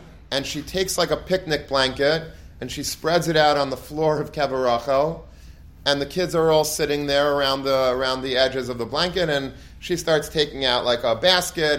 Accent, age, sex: American, 30-49, male